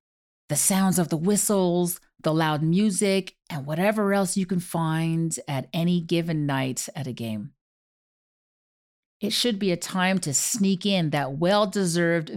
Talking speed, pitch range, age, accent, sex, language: 150 wpm, 150-190 Hz, 40-59, American, female, English